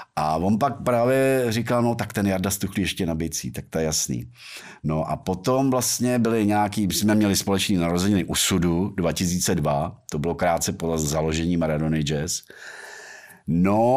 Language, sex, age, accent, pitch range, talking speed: Czech, male, 50-69, native, 85-120 Hz, 160 wpm